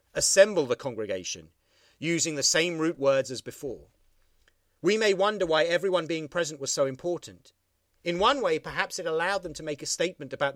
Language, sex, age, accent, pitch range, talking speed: English, male, 40-59, British, 135-175 Hz, 180 wpm